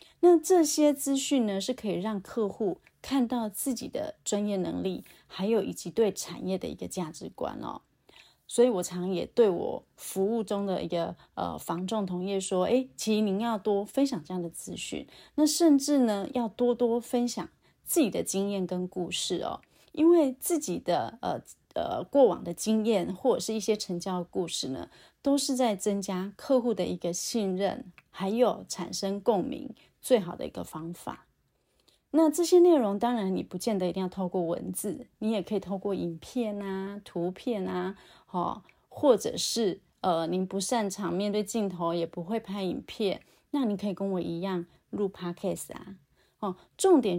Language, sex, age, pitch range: Chinese, female, 30-49, 185-245 Hz